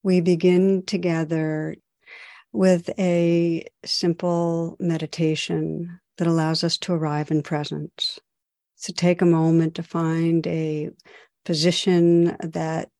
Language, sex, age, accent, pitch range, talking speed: English, female, 60-79, American, 165-180 Hz, 105 wpm